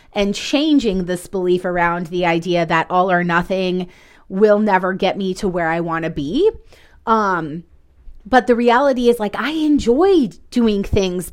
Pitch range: 180-235 Hz